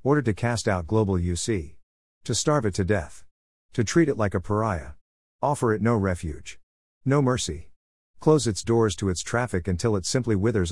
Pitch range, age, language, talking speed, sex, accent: 85-115 Hz, 50-69, English, 185 wpm, male, American